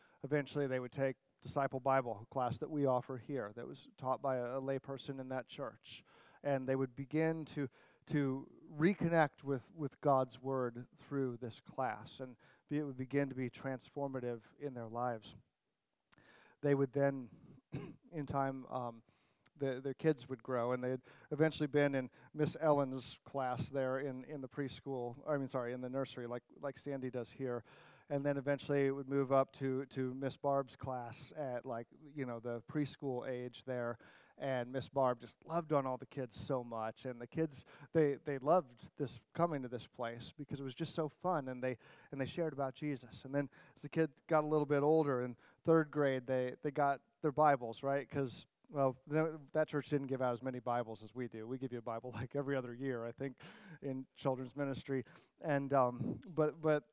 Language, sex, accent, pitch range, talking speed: English, male, American, 125-145 Hz, 195 wpm